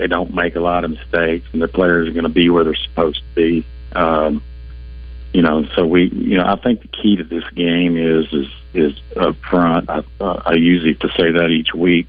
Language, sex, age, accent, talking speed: English, male, 50-69, American, 240 wpm